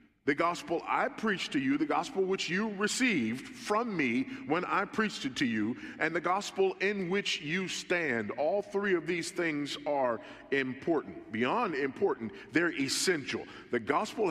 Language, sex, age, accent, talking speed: English, male, 40-59, American, 165 wpm